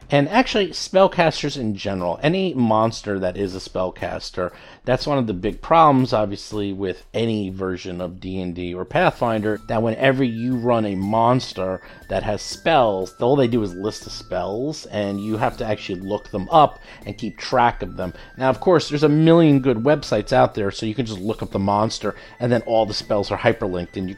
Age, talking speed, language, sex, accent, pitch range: 40-59, 205 wpm, English, male, American, 105-145 Hz